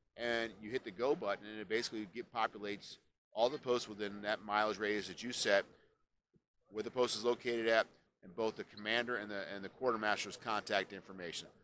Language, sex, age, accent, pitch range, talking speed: English, male, 40-59, American, 95-110 Hz, 195 wpm